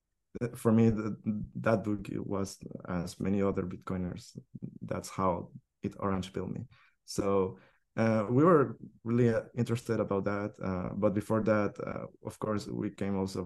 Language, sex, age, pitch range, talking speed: English, male, 20-39, 95-110 Hz, 150 wpm